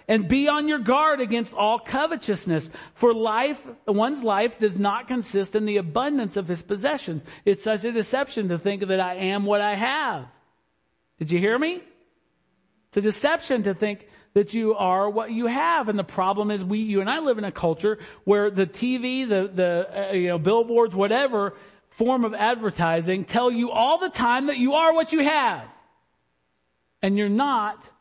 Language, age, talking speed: English, 50-69, 185 wpm